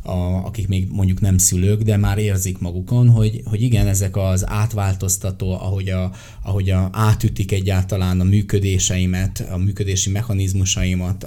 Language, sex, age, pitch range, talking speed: Hungarian, male, 20-39, 90-105 Hz, 130 wpm